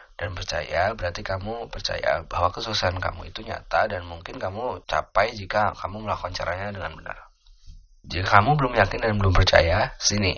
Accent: native